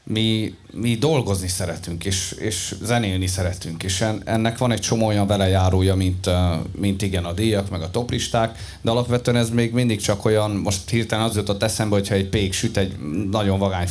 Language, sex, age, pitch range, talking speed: Hungarian, male, 30-49, 95-110 Hz, 180 wpm